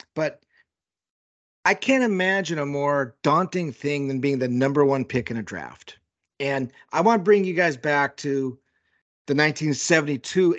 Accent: American